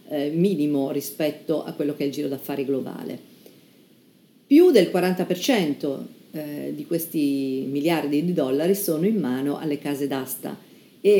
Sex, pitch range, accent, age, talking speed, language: female, 145-200 Hz, native, 50-69, 145 wpm, Italian